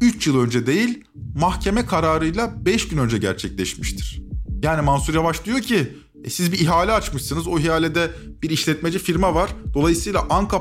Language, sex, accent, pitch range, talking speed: Turkish, male, native, 130-205 Hz, 160 wpm